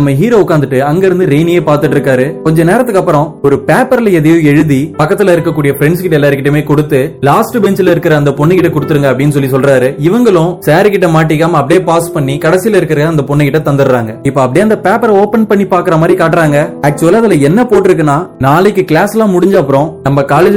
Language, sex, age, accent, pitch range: Tamil, male, 20-39, native, 140-180 Hz